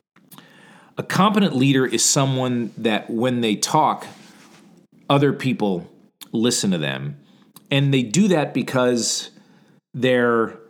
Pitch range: 110-155 Hz